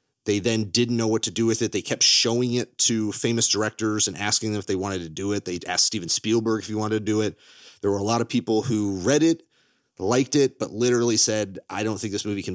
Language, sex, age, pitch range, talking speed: English, male, 30-49, 100-125 Hz, 265 wpm